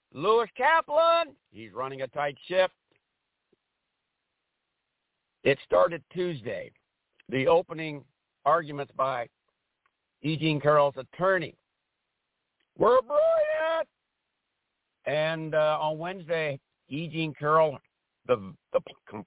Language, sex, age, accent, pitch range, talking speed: English, male, 60-79, American, 145-205 Hz, 90 wpm